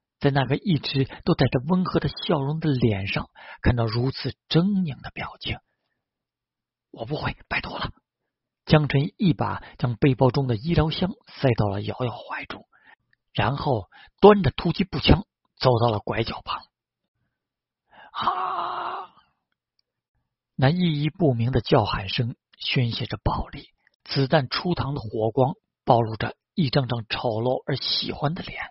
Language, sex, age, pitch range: Chinese, male, 50-69, 120-160 Hz